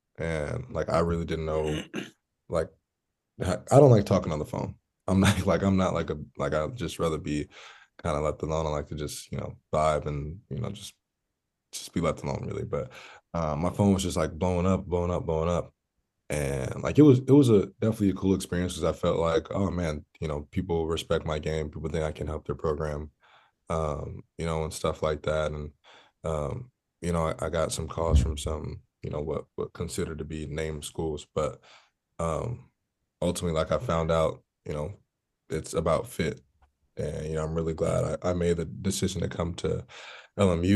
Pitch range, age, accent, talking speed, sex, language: 80-95 Hz, 20-39, American, 210 wpm, male, English